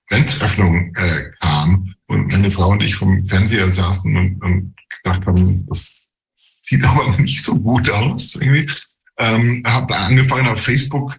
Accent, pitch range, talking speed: German, 95-125 Hz, 150 wpm